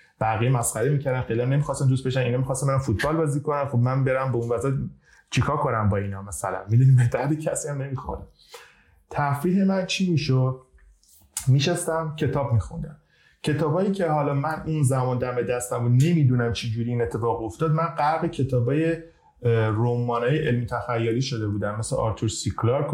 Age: 30-49